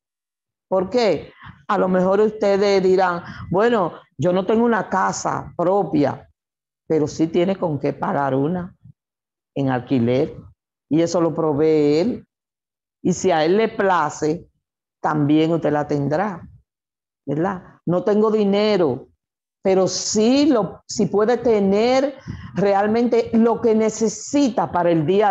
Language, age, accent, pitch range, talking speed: Spanish, 50-69, American, 160-210 Hz, 130 wpm